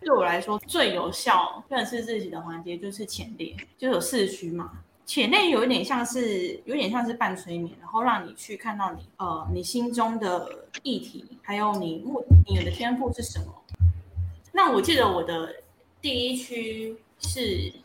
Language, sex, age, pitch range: Chinese, female, 10-29, 175-250 Hz